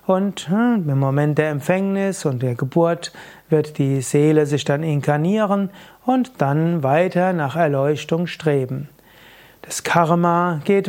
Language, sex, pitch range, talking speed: German, male, 145-180 Hz, 125 wpm